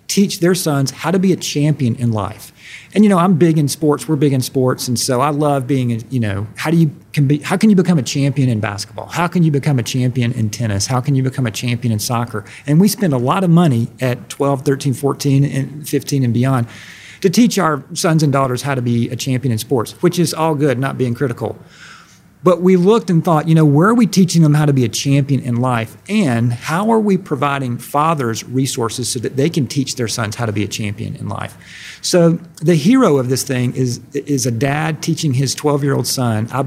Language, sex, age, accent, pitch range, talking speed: English, male, 40-59, American, 120-155 Hz, 240 wpm